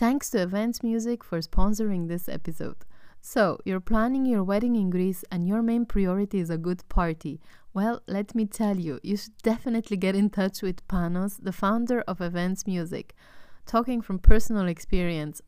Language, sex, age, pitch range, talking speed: English, female, 20-39, 170-205 Hz, 175 wpm